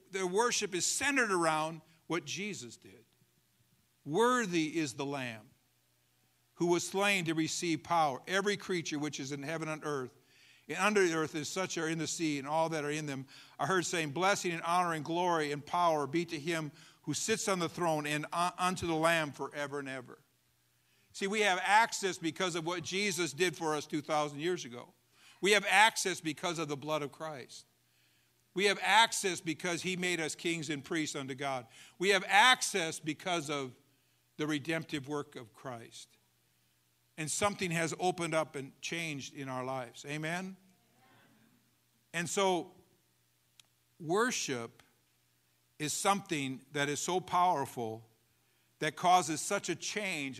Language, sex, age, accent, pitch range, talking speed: English, male, 50-69, American, 140-180 Hz, 165 wpm